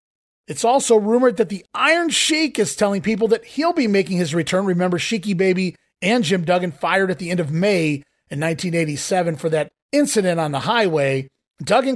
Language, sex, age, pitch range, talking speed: English, male, 30-49, 165-215 Hz, 185 wpm